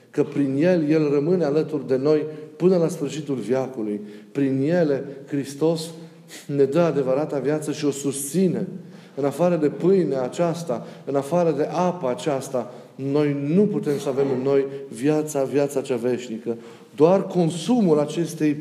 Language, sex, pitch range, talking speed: Romanian, male, 135-165 Hz, 150 wpm